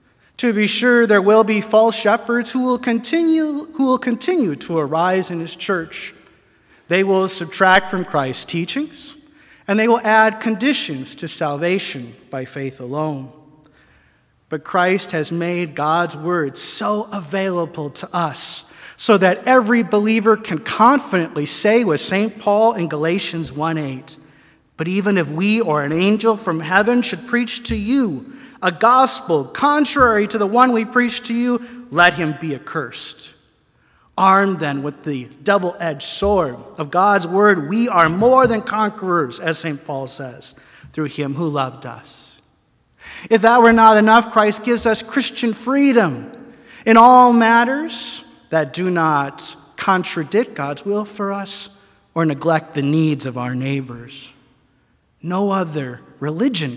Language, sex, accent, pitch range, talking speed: English, male, American, 155-230 Hz, 145 wpm